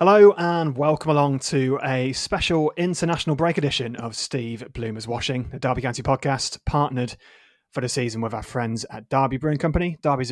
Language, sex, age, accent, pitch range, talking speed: English, male, 30-49, British, 125-160 Hz, 175 wpm